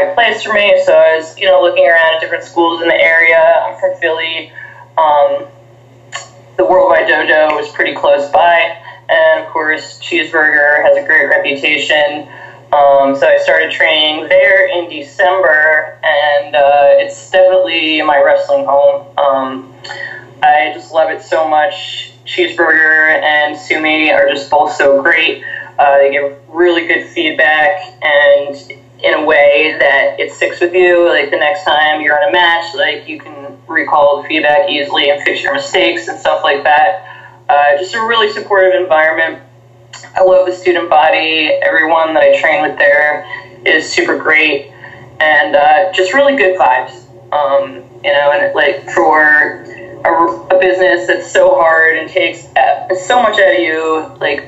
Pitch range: 145-185 Hz